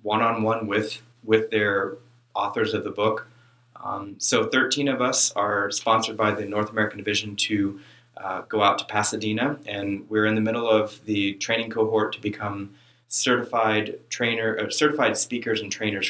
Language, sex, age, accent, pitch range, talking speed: English, male, 30-49, American, 100-115 Hz, 165 wpm